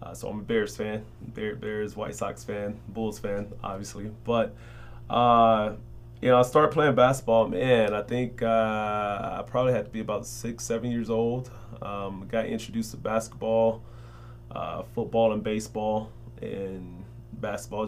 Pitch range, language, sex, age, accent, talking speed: 105-120 Hz, English, male, 20-39, American, 160 wpm